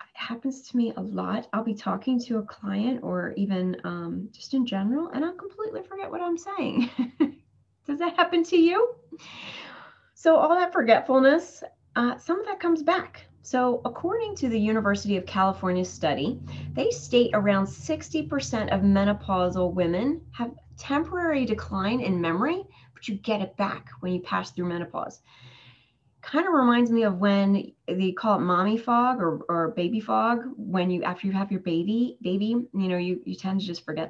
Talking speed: 175 wpm